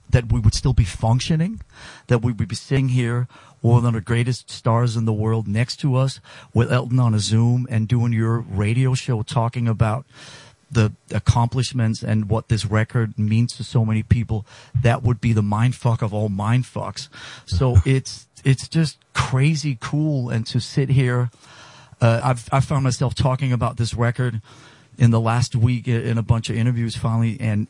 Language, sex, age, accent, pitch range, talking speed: English, male, 40-59, American, 115-130 Hz, 185 wpm